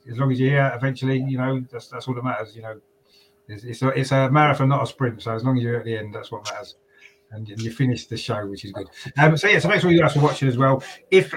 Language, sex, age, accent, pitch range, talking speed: English, male, 30-49, British, 110-130 Hz, 300 wpm